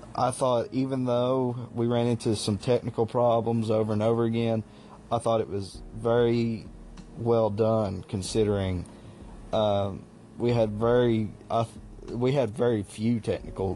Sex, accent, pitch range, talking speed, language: male, American, 100-110 Hz, 145 wpm, English